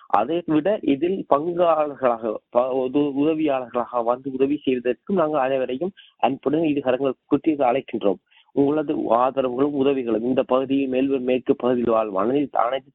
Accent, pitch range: native, 125-150 Hz